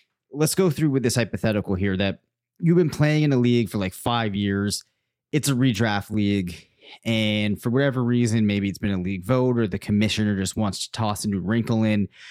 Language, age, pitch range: English, 30-49, 105-130 Hz